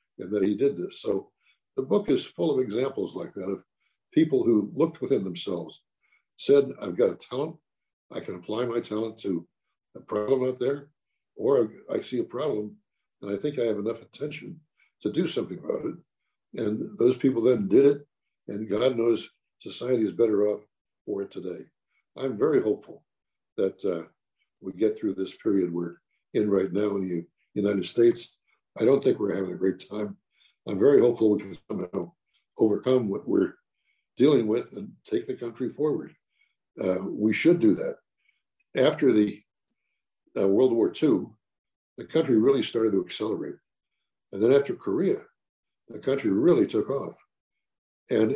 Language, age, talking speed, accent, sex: English, 60-79, 170 wpm, American, male